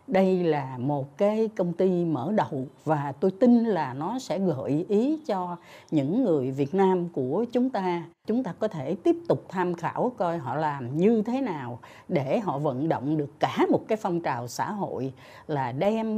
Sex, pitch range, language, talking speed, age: female, 145-210 Hz, Vietnamese, 195 wpm, 60-79